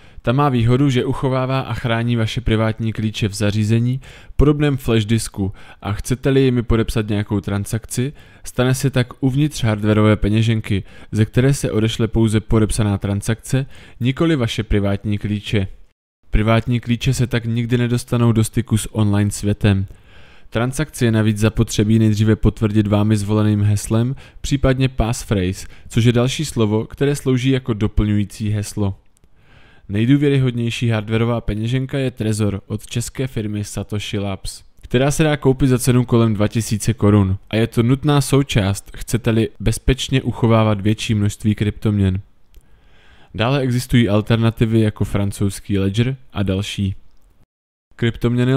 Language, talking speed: Czech, 135 wpm